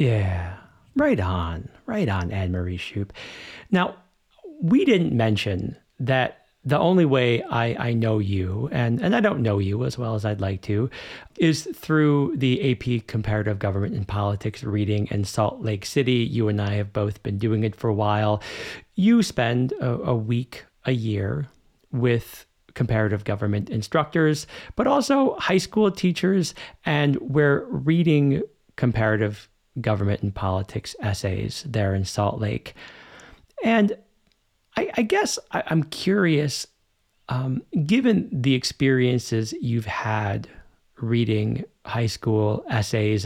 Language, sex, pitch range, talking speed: English, male, 105-130 Hz, 135 wpm